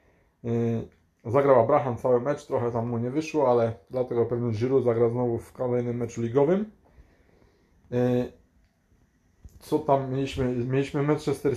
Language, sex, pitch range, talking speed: Polish, male, 105-130 Hz, 125 wpm